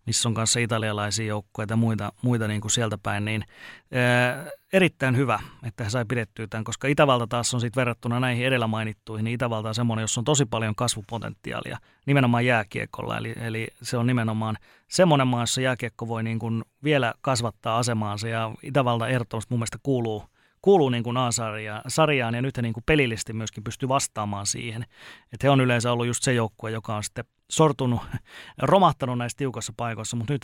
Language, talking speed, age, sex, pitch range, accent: Finnish, 180 wpm, 30-49, male, 110-125 Hz, native